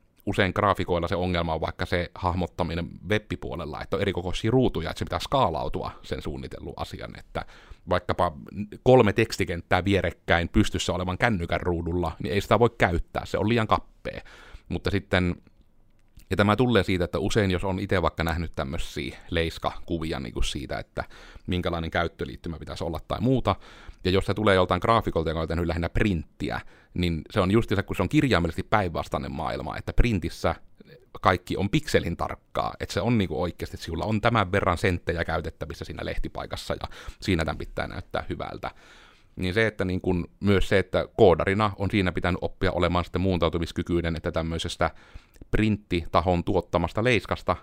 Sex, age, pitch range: male, 30-49, 85-100 Hz